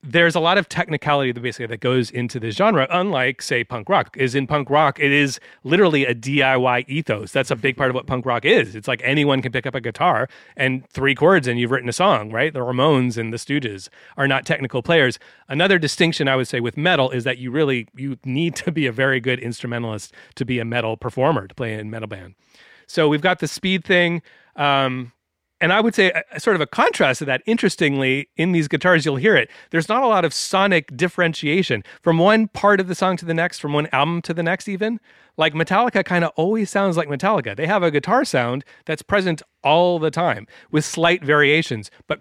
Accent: American